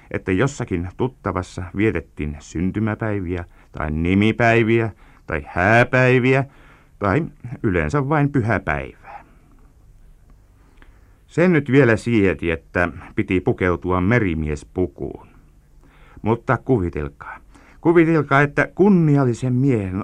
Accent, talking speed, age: native, 80 wpm, 60-79